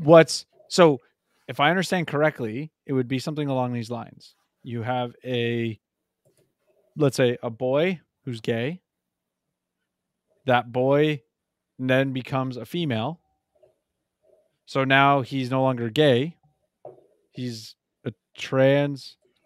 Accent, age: American, 30-49